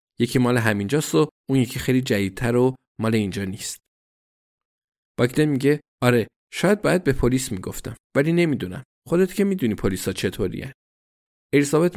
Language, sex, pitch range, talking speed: Persian, male, 105-135 Hz, 145 wpm